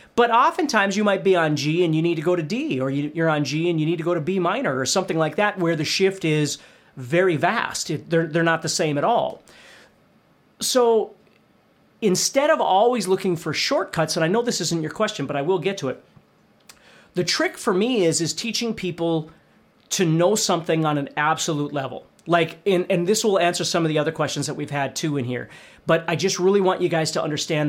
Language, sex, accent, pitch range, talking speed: English, male, American, 150-195 Hz, 225 wpm